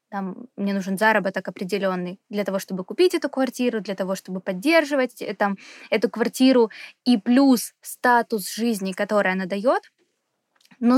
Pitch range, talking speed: 210-250 Hz, 140 wpm